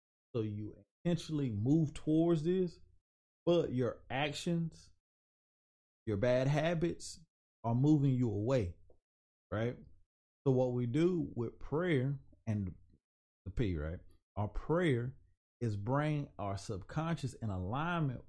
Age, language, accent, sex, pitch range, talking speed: 30-49, English, American, male, 95-140 Hz, 115 wpm